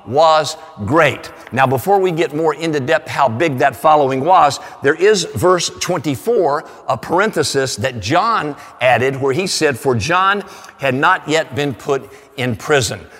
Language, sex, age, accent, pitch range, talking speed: English, male, 50-69, American, 135-190 Hz, 160 wpm